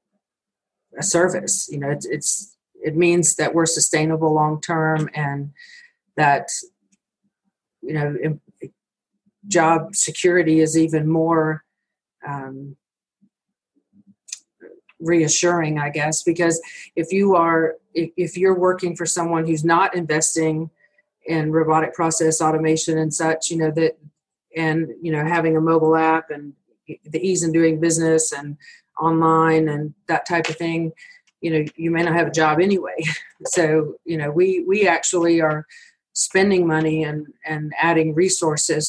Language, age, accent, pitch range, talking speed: English, 40-59, American, 155-175 Hz, 135 wpm